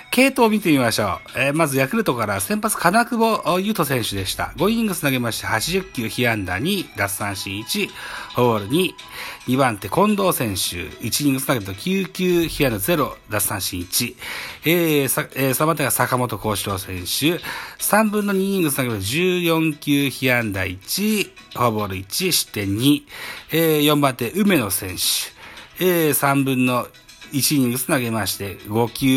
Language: Japanese